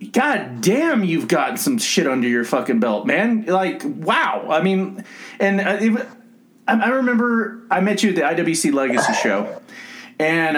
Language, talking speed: English, 160 wpm